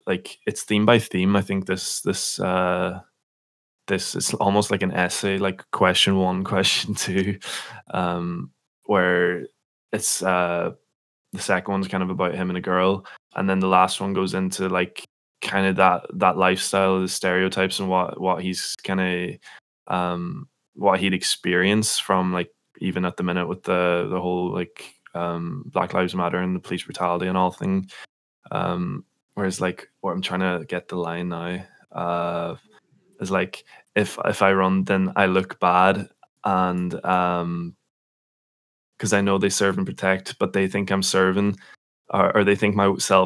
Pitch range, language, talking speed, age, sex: 90-95 Hz, English, 170 wpm, 10-29, male